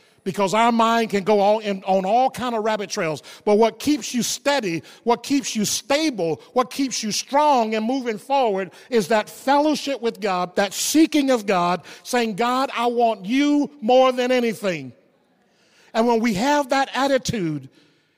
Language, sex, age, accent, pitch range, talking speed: English, male, 50-69, American, 205-260 Hz, 165 wpm